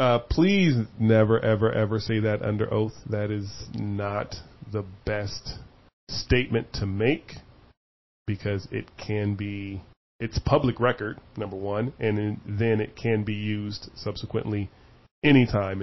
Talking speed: 130 wpm